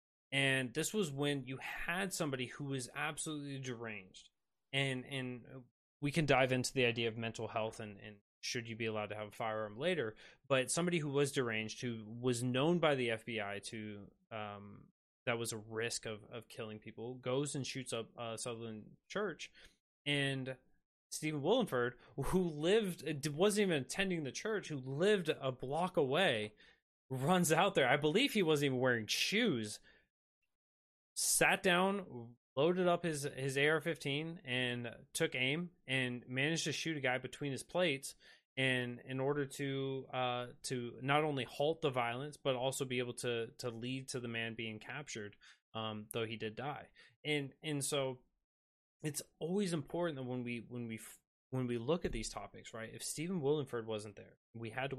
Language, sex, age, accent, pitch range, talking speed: English, male, 20-39, American, 115-145 Hz, 175 wpm